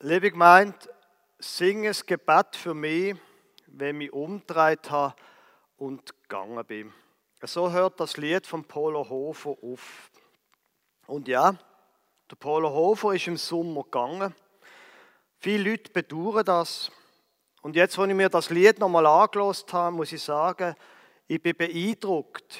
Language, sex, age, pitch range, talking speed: German, male, 50-69, 135-185 Hz, 135 wpm